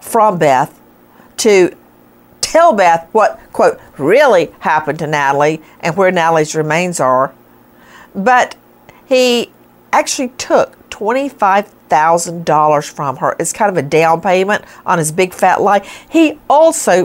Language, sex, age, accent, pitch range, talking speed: English, female, 50-69, American, 150-215 Hz, 125 wpm